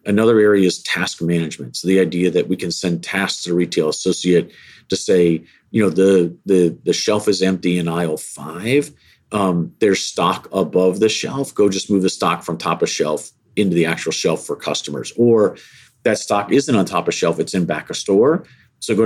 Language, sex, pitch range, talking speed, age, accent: English, male, 90-110 Hz, 210 wpm, 40-59, American